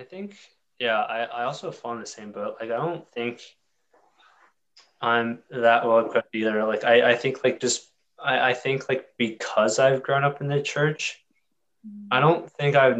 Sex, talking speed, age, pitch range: male, 190 wpm, 20-39, 115-140 Hz